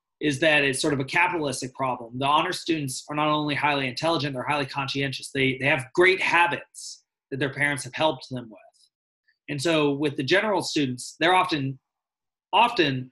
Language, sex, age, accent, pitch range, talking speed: English, male, 30-49, American, 135-160 Hz, 185 wpm